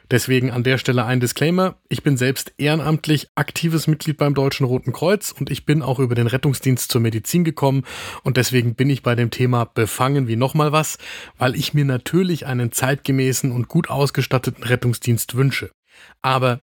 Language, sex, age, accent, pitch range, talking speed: German, male, 30-49, German, 120-150 Hz, 175 wpm